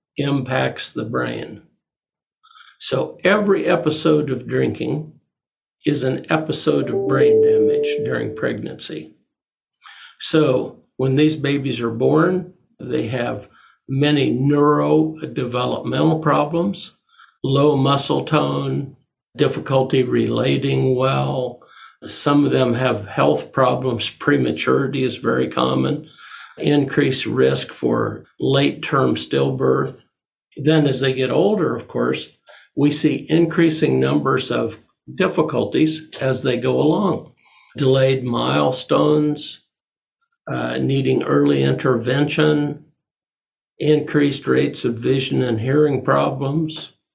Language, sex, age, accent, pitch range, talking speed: English, male, 60-79, American, 115-155 Hz, 100 wpm